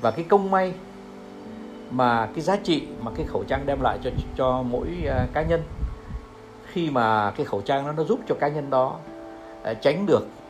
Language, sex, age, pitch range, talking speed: Vietnamese, male, 60-79, 100-165 Hz, 200 wpm